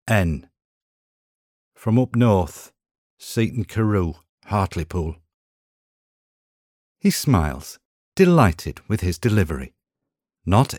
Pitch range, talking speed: 85-115 Hz, 80 wpm